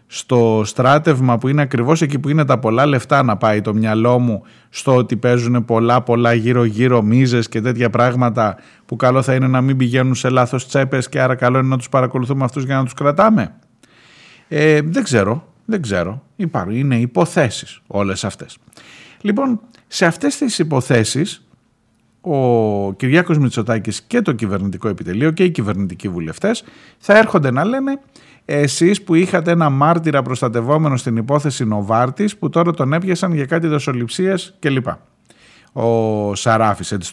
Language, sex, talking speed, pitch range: Greek, male, 160 wpm, 115-150 Hz